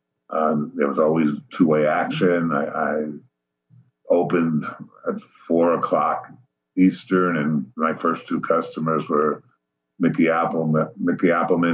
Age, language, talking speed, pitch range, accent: 50-69, English, 115 wpm, 75-95 Hz, American